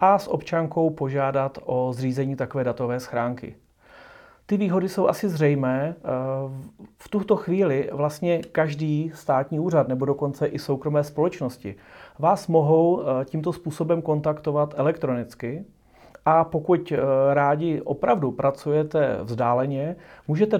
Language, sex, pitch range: Czech, male, 135-165 Hz